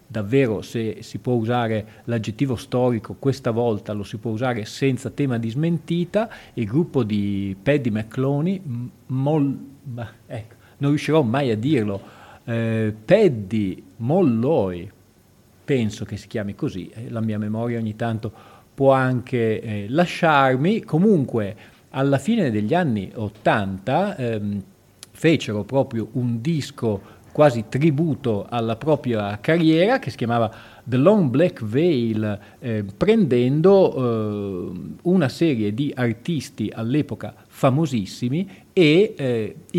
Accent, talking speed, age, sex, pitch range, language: native, 120 wpm, 40-59, male, 110-135 Hz, Italian